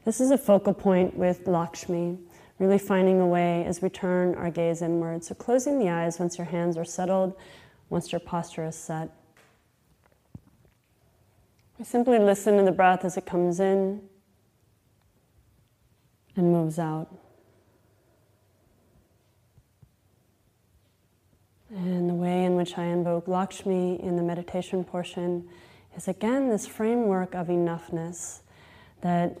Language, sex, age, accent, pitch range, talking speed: English, female, 30-49, American, 165-185 Hz, 130 wpm